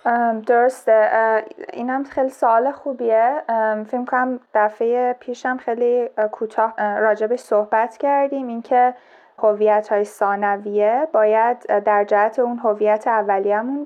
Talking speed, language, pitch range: 110 wpm, Persian, 215-255 Hz